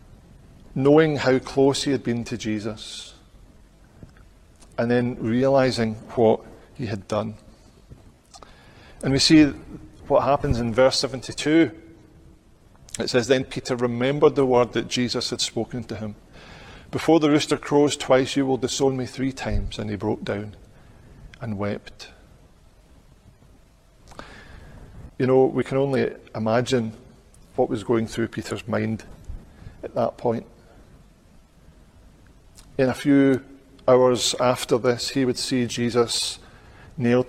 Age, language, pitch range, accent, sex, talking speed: 40-59, English, 110-130 Hz, British, male, 125 wpm